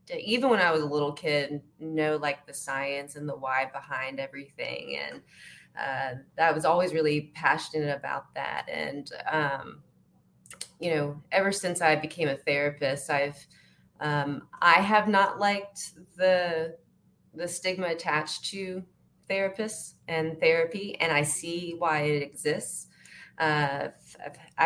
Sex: female